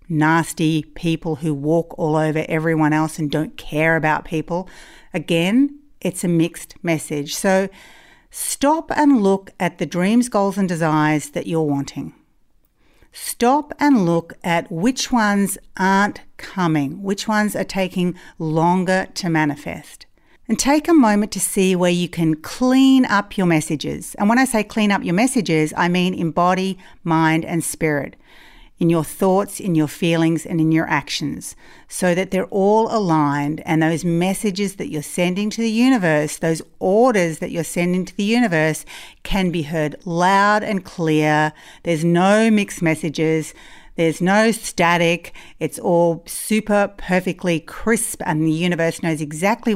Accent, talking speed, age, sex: Australian, 155 wpm, 50-69, female